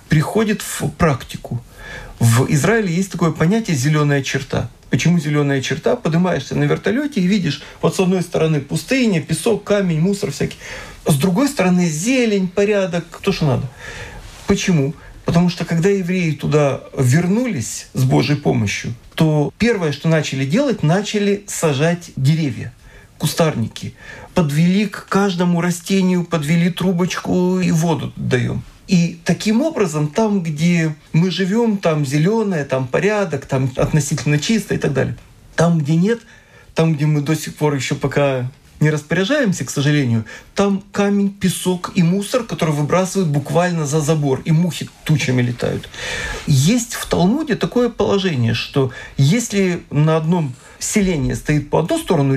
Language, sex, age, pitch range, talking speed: Russian, male, 40-59, 145-190 Hz, 140 wpm